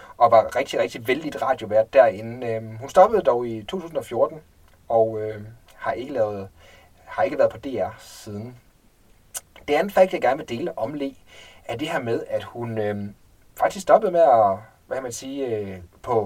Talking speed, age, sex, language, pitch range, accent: 175 wpm, 30-49, male, Danish, 110-150 Hz, native